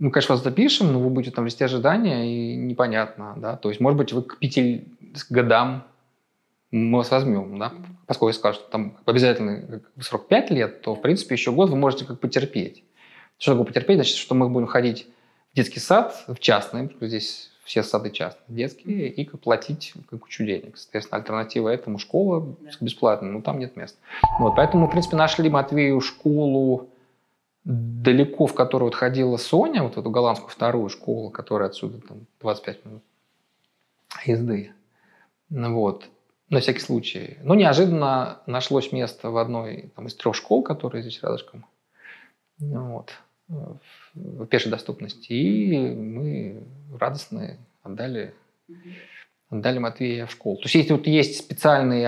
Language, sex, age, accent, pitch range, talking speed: Russian, male, 20-39, native, 115-145 Hz, 150 wpm